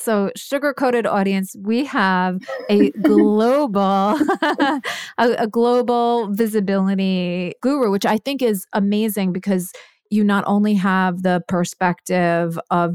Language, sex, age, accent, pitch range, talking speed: English, female, 30-49, American, 170-200 Hz, 120 wpm